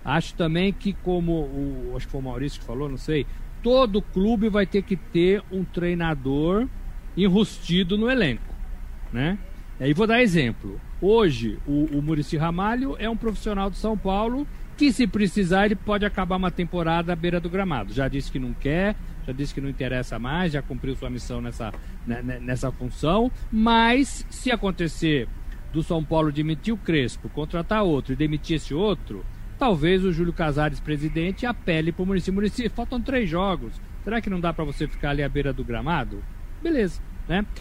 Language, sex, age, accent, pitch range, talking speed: Portuguese, male, 50-69, Brazilian, 135-205 Hz, 180 wpm